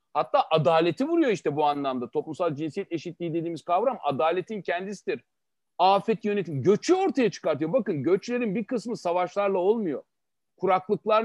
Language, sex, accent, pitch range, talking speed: Turkish, male, native, 165-230 Hz, 135 wpm